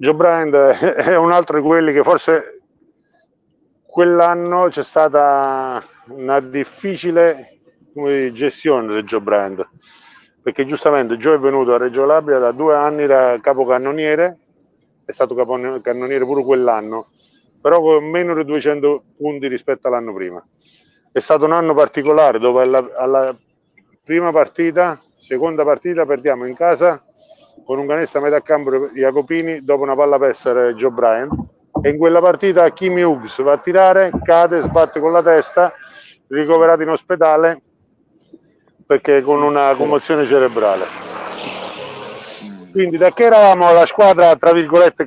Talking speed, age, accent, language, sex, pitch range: 135 wpm, 50-69, native, Italian, male, 135-170 Hz